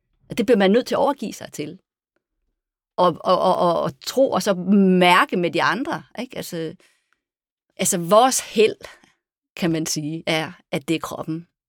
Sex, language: female, English